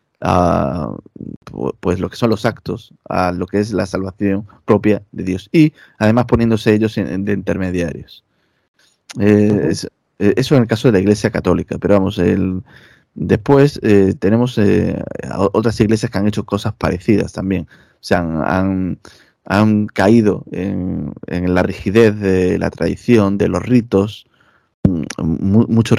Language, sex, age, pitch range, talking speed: Spanish, male, 20-39, 95-110 Hz, 145 wpm